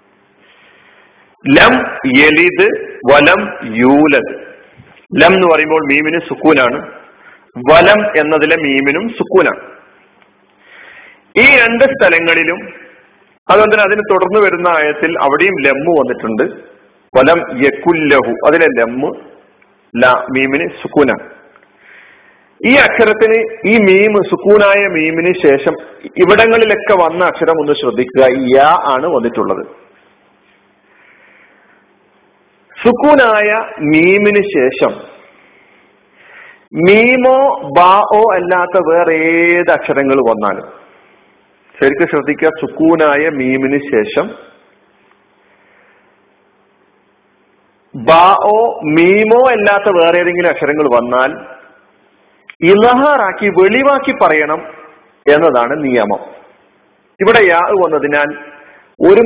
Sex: male